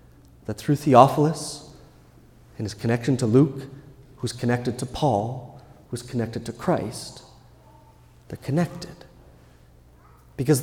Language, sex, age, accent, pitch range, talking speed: English, male, 30-49, American, 115-145 Hz, 105 wpm